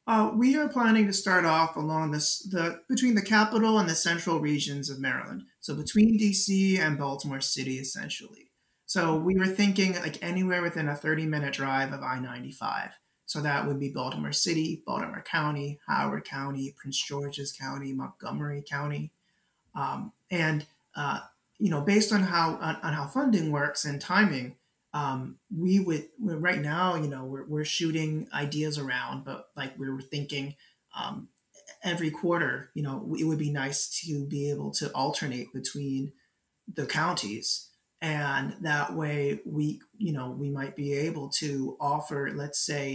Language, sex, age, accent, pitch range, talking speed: English, male, 30-49, American, 140-175 Hz, 165 wpm